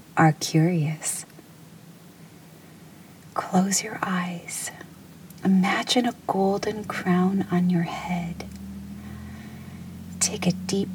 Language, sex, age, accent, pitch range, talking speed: English, female, 40-59, American, 170-185 Hz, 80 wpm